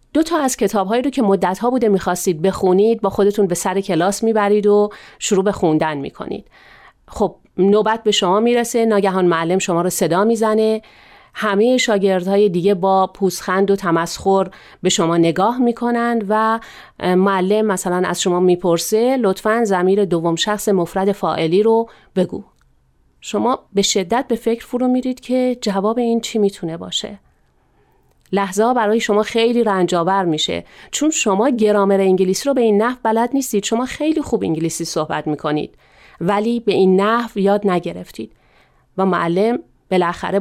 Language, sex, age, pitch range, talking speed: Persian, female, 40-59, 180-225 Hz, 155 wpm